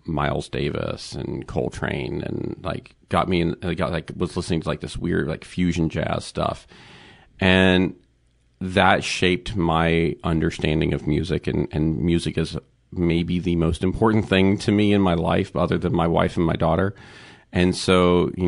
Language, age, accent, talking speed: English, 40-59, American, 170 wpm